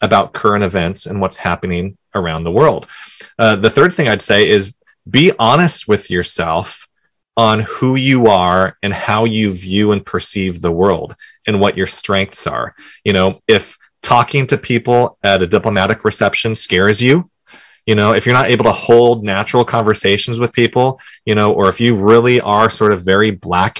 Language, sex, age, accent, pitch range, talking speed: English, male, 30-49, American, 95-115 Hz, 180 wpm